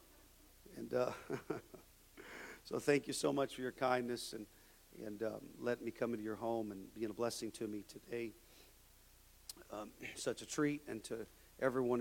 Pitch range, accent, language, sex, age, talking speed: 110-125 Hz, American, English, male, 40-59, 165 wpm